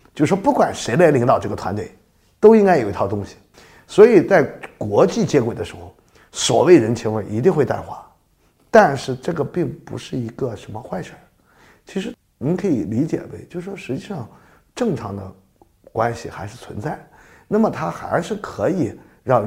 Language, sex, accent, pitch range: Chinese, male, native, 120-195 Hz